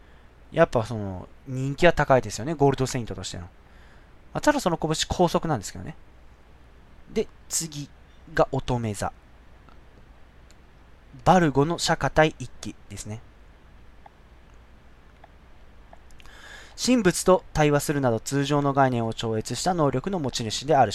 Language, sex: Japanese, male